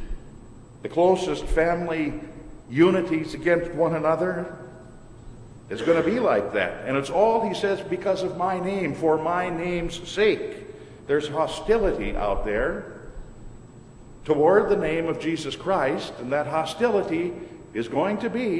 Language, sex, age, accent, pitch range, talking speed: English, male, 50-69, American, 125-180 Hz, 140 wpm